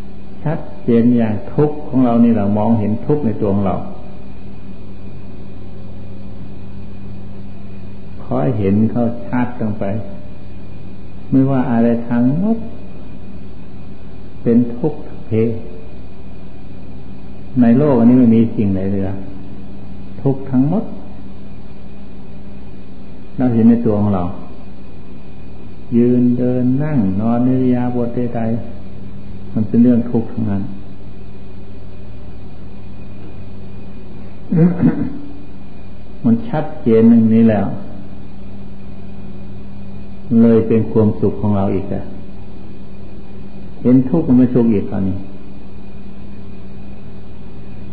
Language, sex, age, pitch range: Thai, male, 60-79, 95-115 Hz